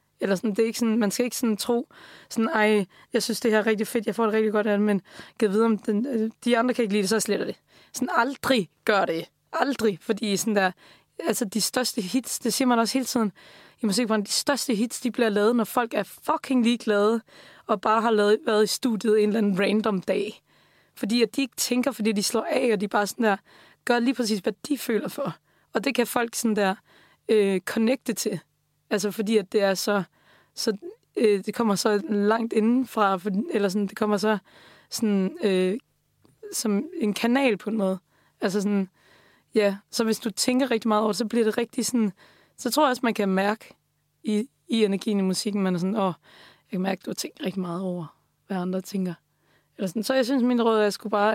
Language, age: Danish, 20-39